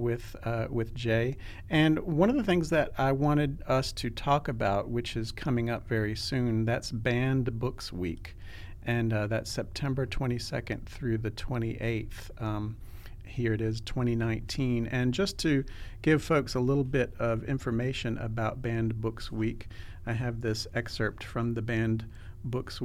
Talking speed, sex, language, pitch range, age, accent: 160 wpm, male, English, 105-125 Hz, 50-69, American